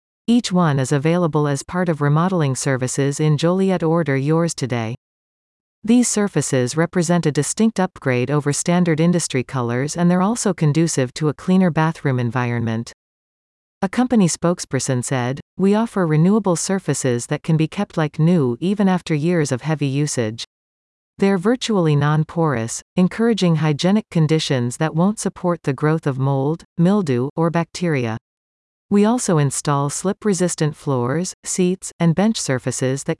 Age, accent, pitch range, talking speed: 40-59, American, 135-180 Hz, 145 wpm